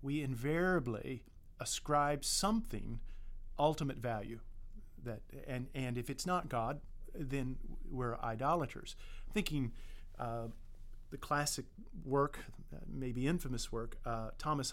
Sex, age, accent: male, 40-59, American